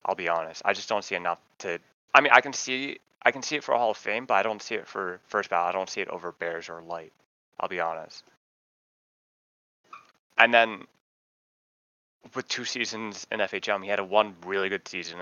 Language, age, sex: English, 20-39, male